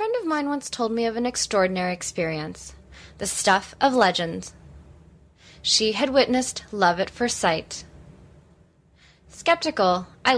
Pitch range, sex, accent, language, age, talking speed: 185-285 Hz, female, American, English, 20-39, 140 wpm